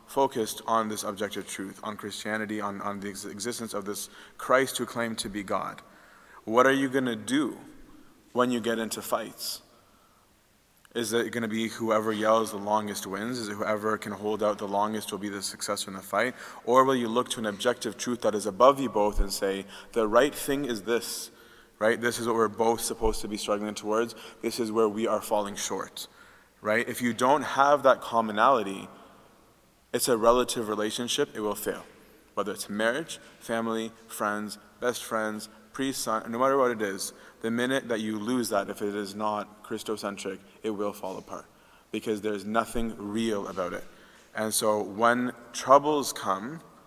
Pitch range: 105-120 Hz